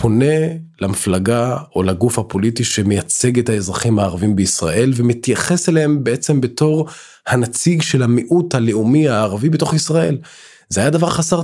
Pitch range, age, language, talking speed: 115-145 Hz, 30-49, Hebrew, 130 wpm